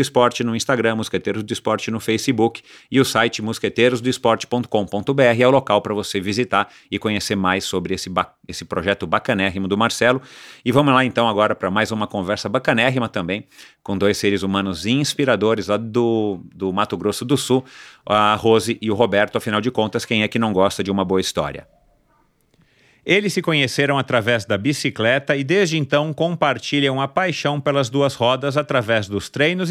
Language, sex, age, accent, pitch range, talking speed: Portuguese, male, 40-59, Brazilian, 110-145 Hz, 175 wpm